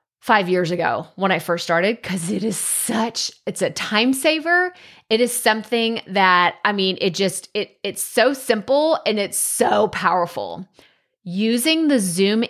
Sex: female